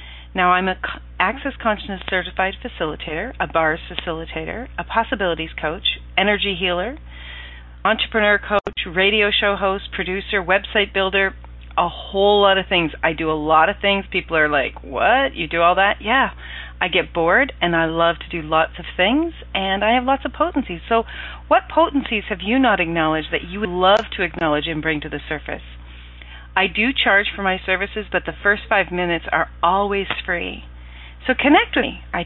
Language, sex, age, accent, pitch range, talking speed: English, female, 40-59, American, 155-205 Hz, 180 wpm